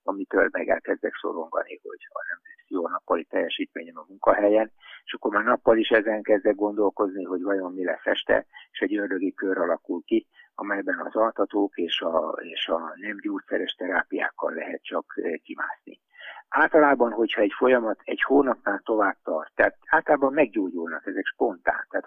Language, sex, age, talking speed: Hungarian, male, 60-79, 155 wpm